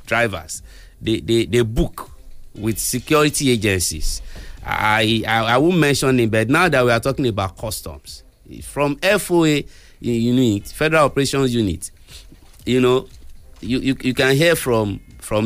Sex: male